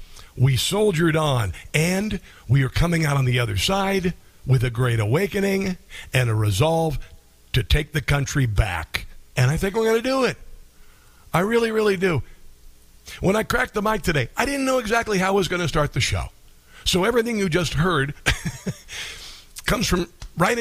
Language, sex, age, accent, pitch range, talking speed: English, male, 50-69, American, 120-160 Hz, 180 wpm